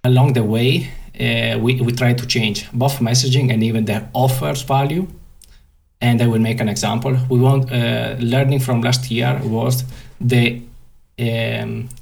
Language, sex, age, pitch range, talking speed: English, male, 20-39, 110-130 Hz, 160 wpm